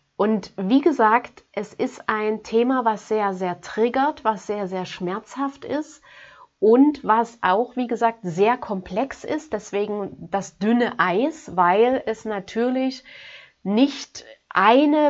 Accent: German